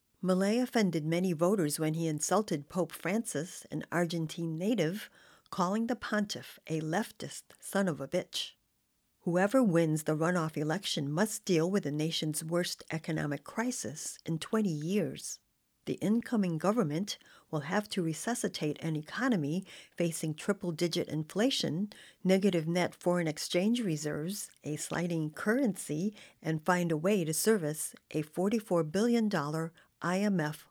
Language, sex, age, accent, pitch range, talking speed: English, female, 50-69, American, 155-200 Hz, 130 wpm